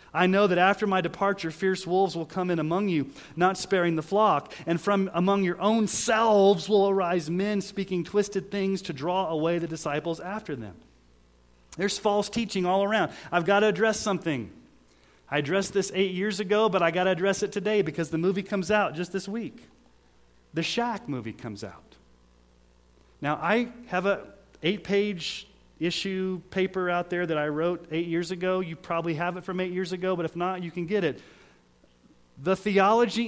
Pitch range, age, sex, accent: 140-195 Hz, 30-49, male, American